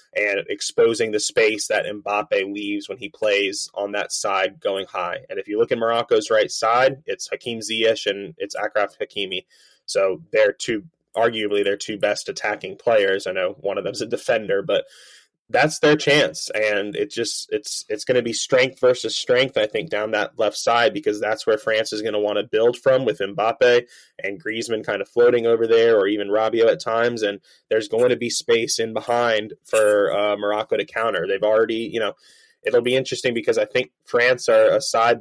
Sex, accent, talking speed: male, American, 205 wpm